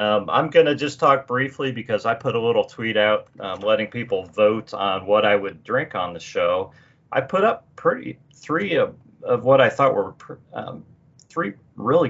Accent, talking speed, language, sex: American, 200 wpm, English, male